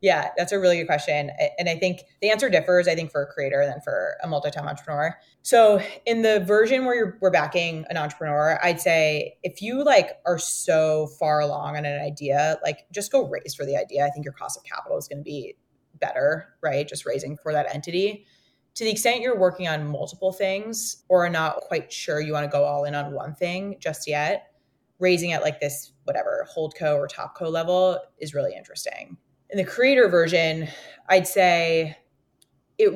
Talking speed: 200 wpm